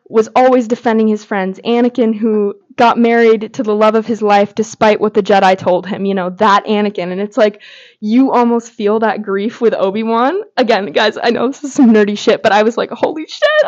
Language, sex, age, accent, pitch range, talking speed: English, female, 20-39, American, 200-235 Hz, 220 wpm